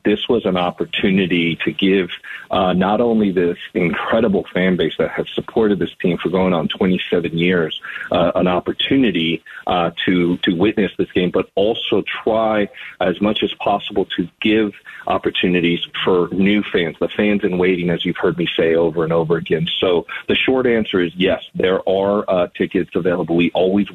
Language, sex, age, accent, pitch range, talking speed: English, male, 40-59, American, 85-100 Hz, 180 wpm